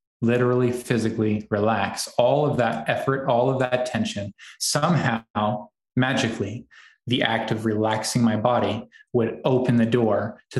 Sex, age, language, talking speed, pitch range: male, 20-39, English, 135 wpm, 105-120 Hz